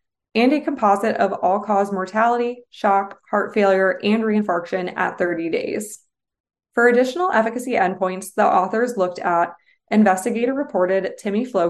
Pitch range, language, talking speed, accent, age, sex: 185-230 Hz, English, 140 wpm, American, 20-39, female